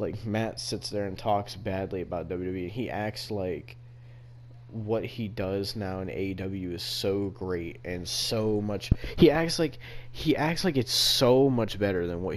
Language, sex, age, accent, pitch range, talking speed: English, male, 20-39, American, 95-120 Hz, 175 wpm